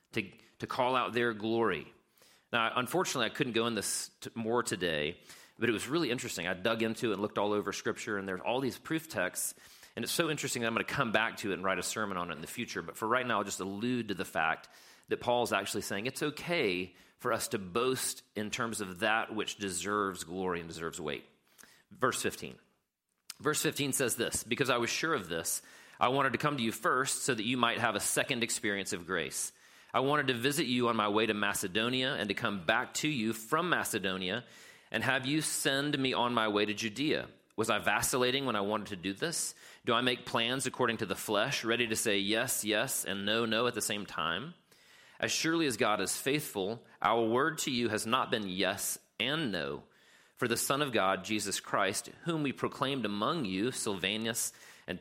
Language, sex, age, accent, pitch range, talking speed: English, male, 40-59, American, 100-130 Hz, 220 wpm